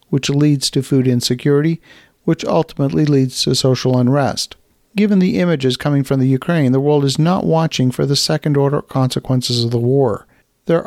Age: 50-69